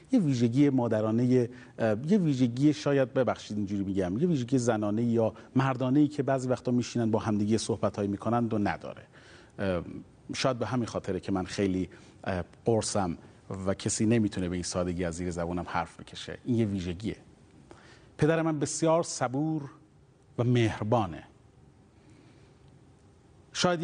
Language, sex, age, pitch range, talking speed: Persian, male, 40-59, 110-140 Hz, 135 wpm